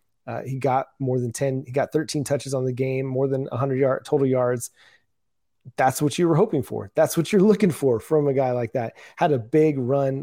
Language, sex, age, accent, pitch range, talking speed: English, male, 30-49, American, 125-155 Hz, 230 wpm